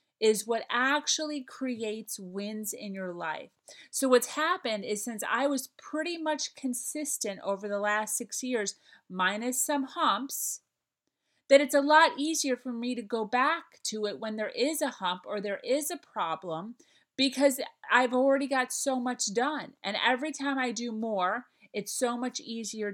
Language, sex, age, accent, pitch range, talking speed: English, female, 30-49, American, 215-275 Hz, 170 wpm